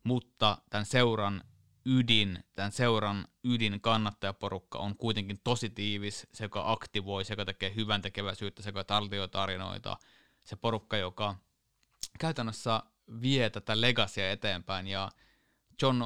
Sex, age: male, 20-39